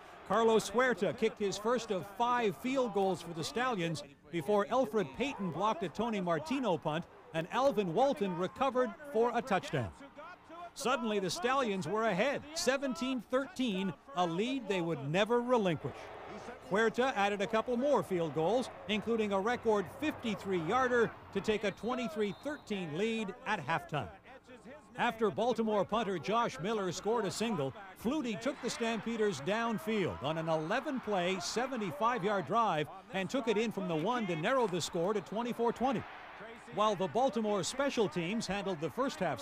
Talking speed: 145 wpm